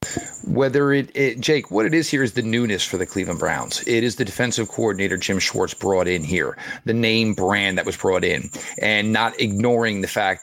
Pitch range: 100-120 Hz